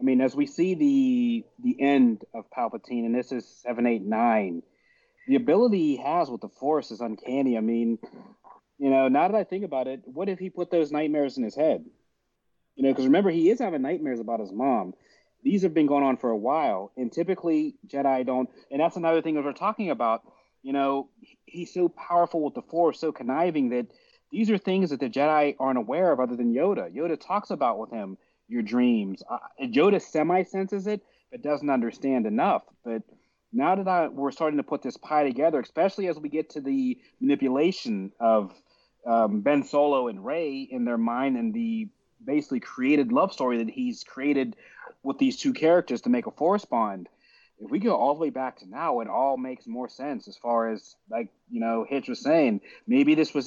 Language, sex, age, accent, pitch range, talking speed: English, male, 30-49, American, 130-195 Hz, 210 wpm